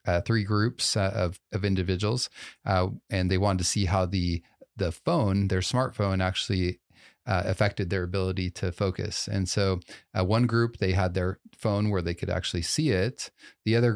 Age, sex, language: 30-49, male, English